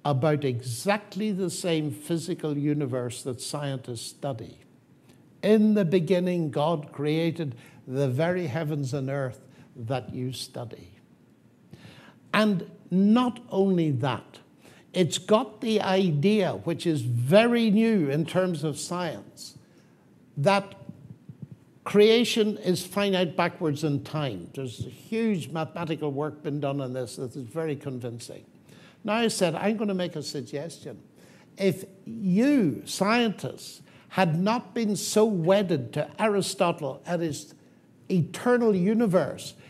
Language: English